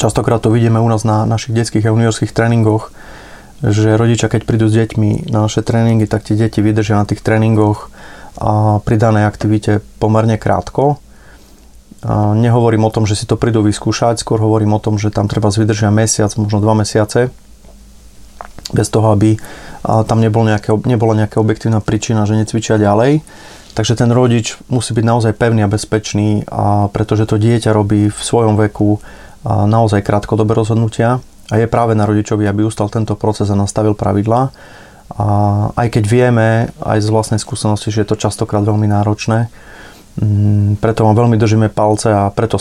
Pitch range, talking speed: 105-115 Hz, 160 wpm